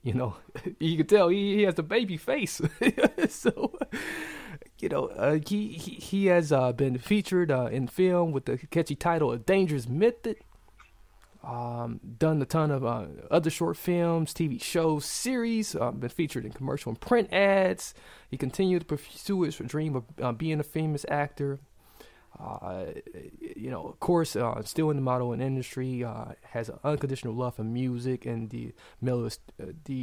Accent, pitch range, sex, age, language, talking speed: American, 120-165 Hz, male, 20-39, English, 170 wpm